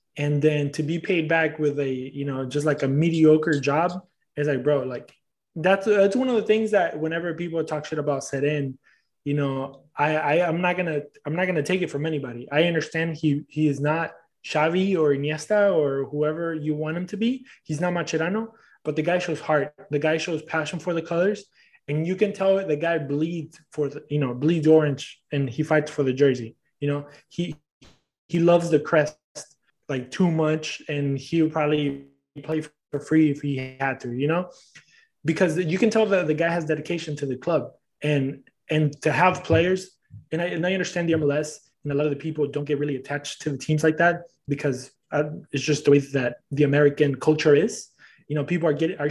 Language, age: English, 20-39